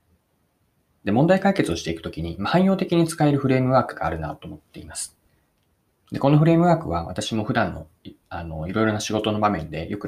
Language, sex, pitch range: Japanese, male, 90-125 Hz